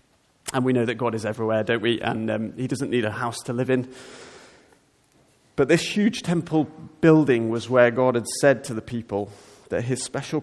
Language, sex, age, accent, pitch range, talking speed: English, male, 30-49, British, 120-145 Hz, 200 wpm